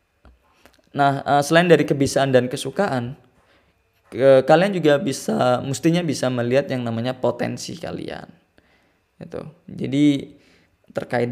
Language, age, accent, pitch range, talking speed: Indonesian, 20-39, native, 120-145 Hz, 105 wpm